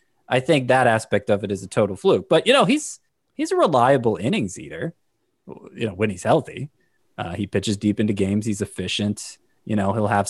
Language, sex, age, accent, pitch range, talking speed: English, male, 20-39, American, 100-120 Hz, 210 wpm